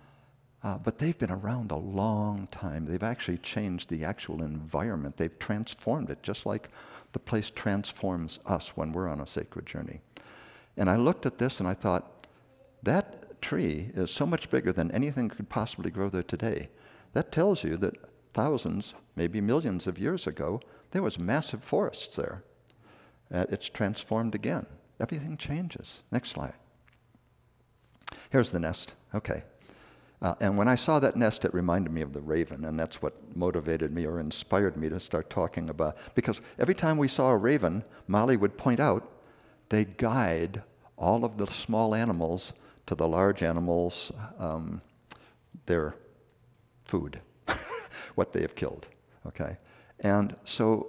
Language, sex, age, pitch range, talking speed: English, male, 60-79, 85-115 Hz, 160 wpm